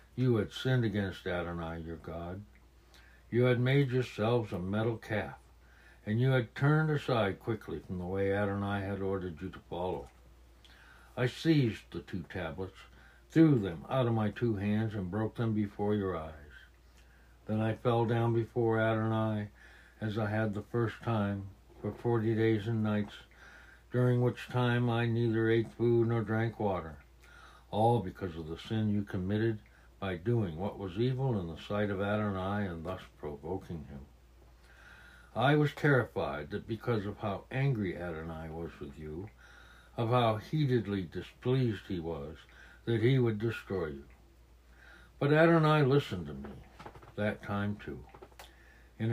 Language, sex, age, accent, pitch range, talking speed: English, male, 60-79, American, 85-120 Hz, 155 wpm